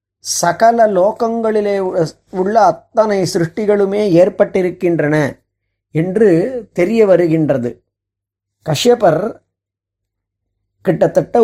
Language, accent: Tamil, native